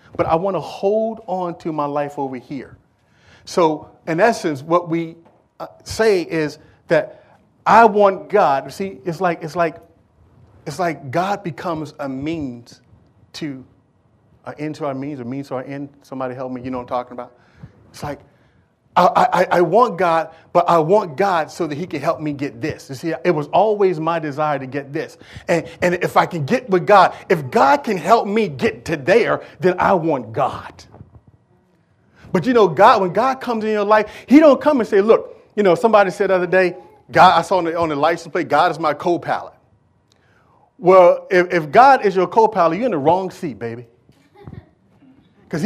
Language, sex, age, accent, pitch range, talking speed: English, male, 40-59, American, 145-195 Hz, 200 wpm